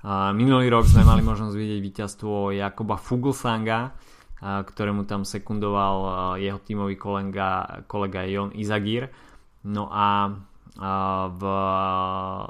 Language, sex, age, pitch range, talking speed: Slovak, male, 20-39, 100-110 Hz, 95 wpm